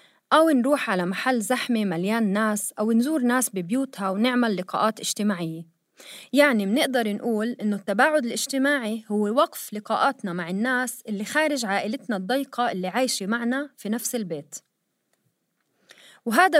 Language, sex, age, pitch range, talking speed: Arabic, female, 30-49, 195-265 Hz, 130 wpm